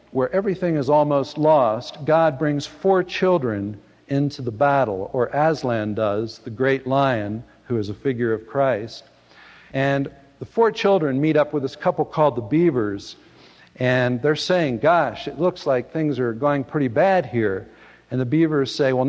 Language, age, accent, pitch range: English, 60-79, American, 125-170 Hz